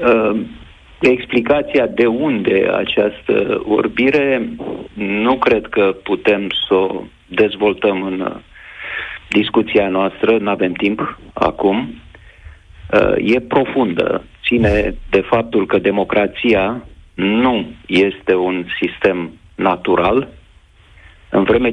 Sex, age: male, 40-59